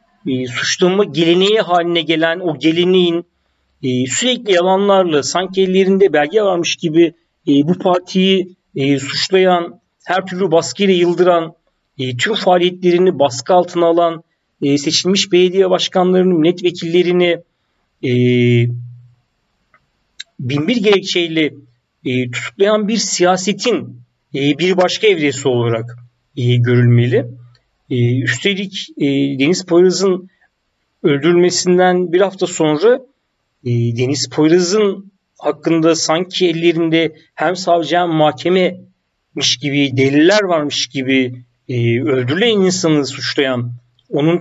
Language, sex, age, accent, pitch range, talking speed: Turkish, male, 50-69, native, 135-185 Hz, 100 wpm